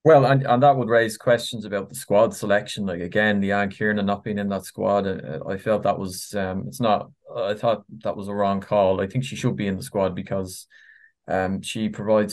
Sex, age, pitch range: male, 20-39, 105-130 Hz